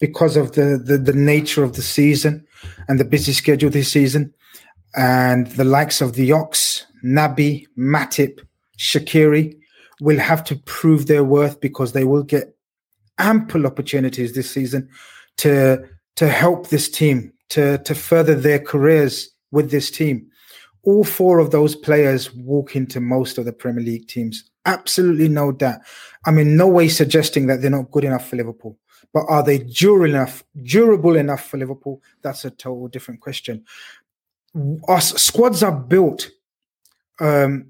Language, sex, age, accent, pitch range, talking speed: English, male, 30-49, British, 135-160 Hz, 155 wpm